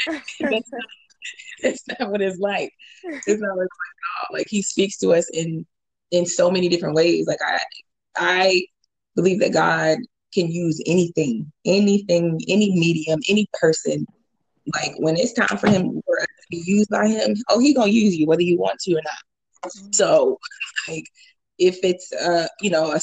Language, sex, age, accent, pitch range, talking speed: English, female, 20-39, American, 165-215 Hz, 175 wpm